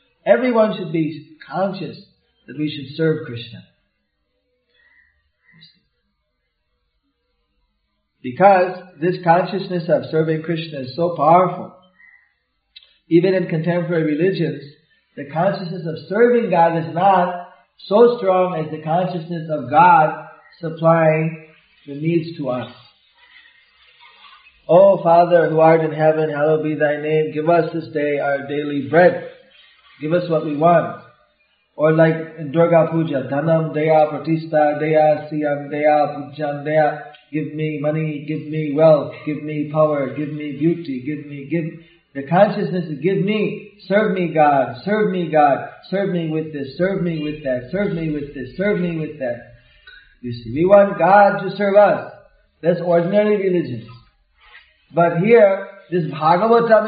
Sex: male